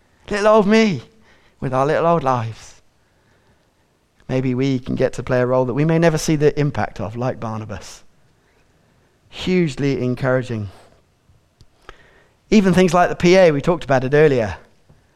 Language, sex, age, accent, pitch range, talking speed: English, male, 30-49, British, 125-185 Hz, 150 wpm